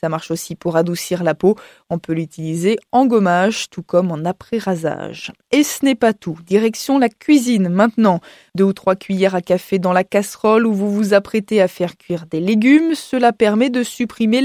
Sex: female